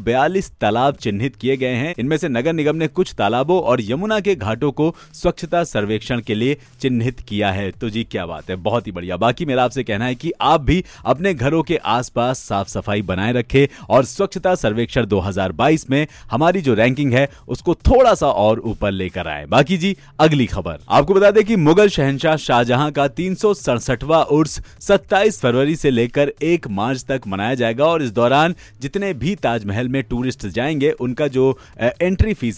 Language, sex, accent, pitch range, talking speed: Hindi, male, native, 115-155 Hz, 140 wpm